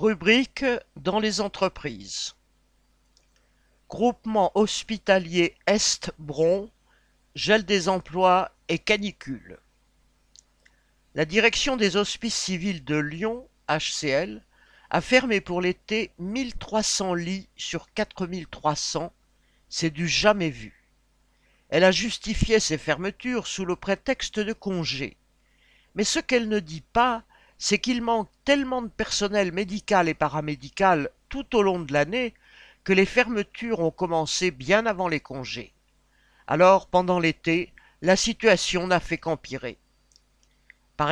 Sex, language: male, French